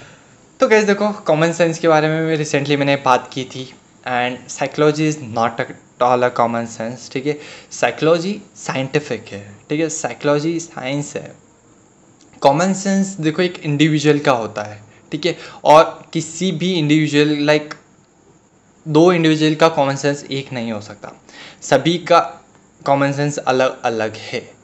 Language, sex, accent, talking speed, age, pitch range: Hindi, male, native, 160 wpm, 20-39, 135-170 Hz